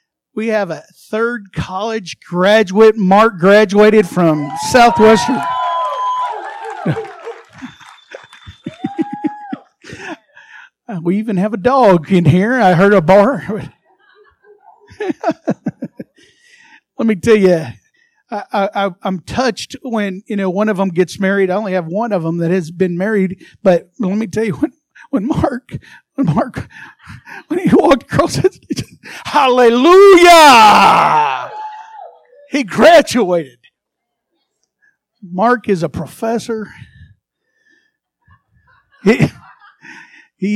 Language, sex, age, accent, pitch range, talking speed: English, male, 50-69, American, 185-275 Hz, 100 wpm